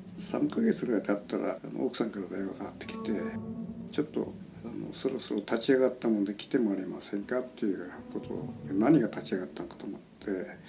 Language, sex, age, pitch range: Japanese, male, 60-79, 105-165 Hz